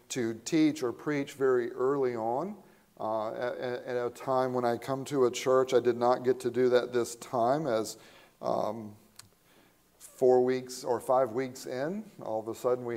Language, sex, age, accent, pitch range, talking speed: English, male, 40-59, American, 115-140 Hz, 185 wpm